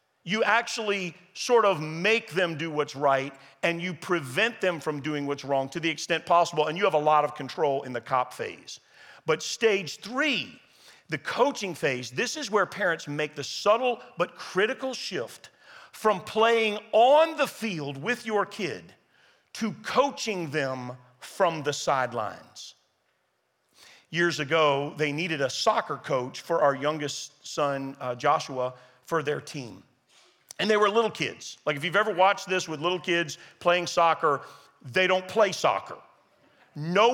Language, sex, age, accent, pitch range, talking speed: English, male, 40-59, American, 150-215 Hz, 160 wpm